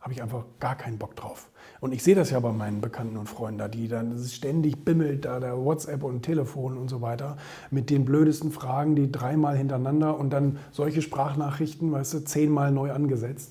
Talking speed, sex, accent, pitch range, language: 205 wpm, male, German, 120-155 Hz, German